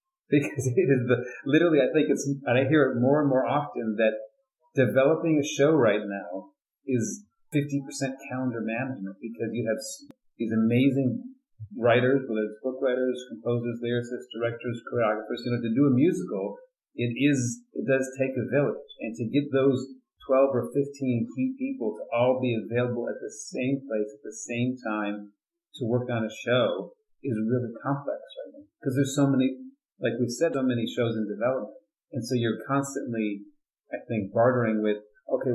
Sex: male